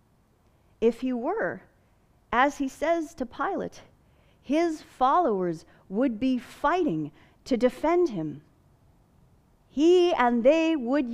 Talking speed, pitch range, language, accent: 110 wpm, 180-275 Hz, English, American